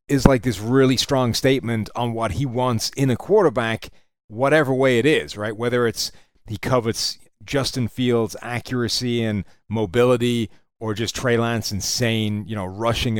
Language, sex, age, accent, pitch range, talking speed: English, male, 30-49, American, 110-130 Hz, 160 wpm